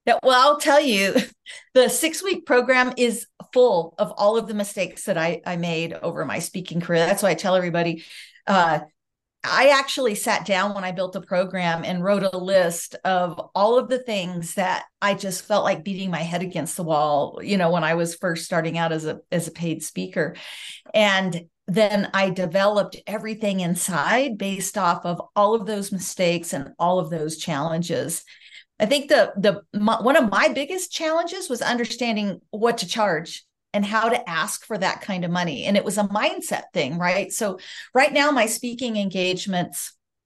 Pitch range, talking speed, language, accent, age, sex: 175-220 Hz, 185 wpm, English, American, 40-59, female